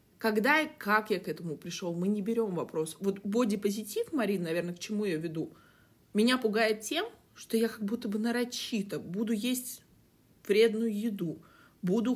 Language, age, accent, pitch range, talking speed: Russian, 20-39, native, 175-220 Hz, 165 wpm